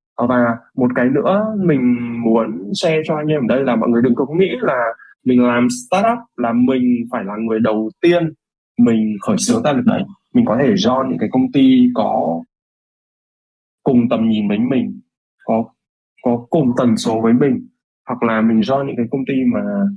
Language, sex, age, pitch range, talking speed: Vietnamese, male, 20-39, 115-180 Hz, 195 wpm